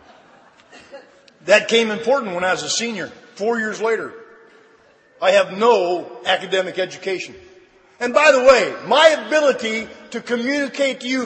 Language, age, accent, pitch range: English, 50-69, American, 200-275 Hz